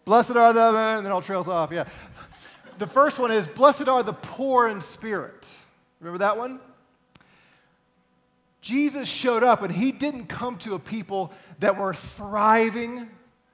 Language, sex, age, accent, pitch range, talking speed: English, male, 40-59, American, 160-225 Hz, 155 wpm